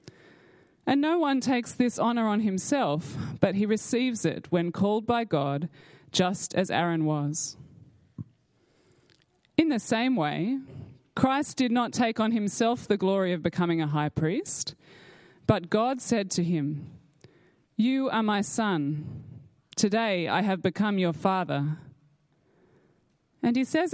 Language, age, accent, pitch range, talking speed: English, 20-39, Australian, 155-225 Hz, 140 wpm